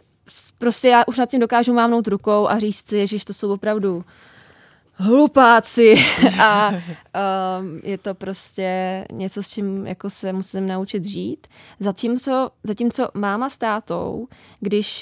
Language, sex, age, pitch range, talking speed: Czech, female, 20-39, 190-215 Hz, 140 wpm